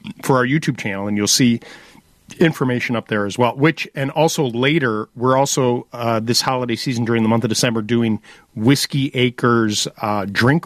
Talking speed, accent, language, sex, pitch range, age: 190 wpm, American, English, male, 115-155 Hz, 40-59